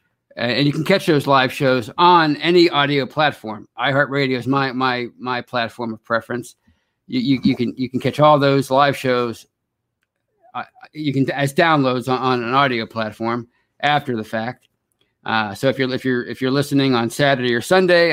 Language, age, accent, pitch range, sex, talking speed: English, 50-69, American, 125-150 Hz, male, 190 wpm